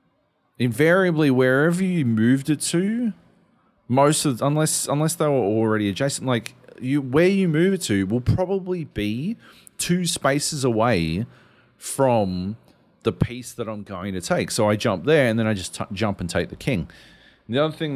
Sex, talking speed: male, 170 wpm